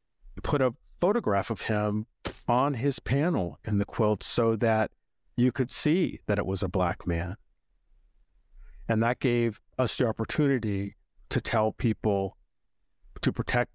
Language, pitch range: English, 95-120 Hz